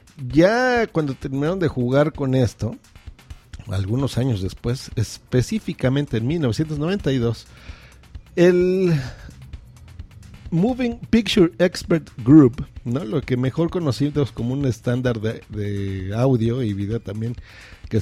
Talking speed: 105 wpm